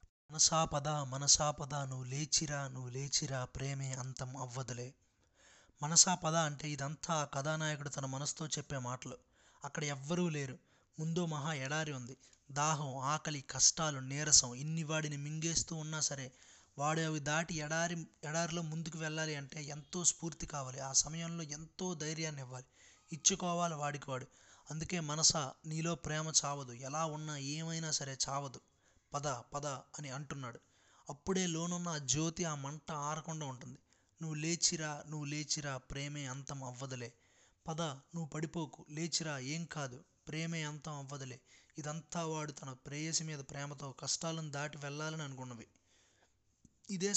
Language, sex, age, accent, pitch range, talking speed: Telugu, male, 20-39, native, 135-160 Hz, 125 wpm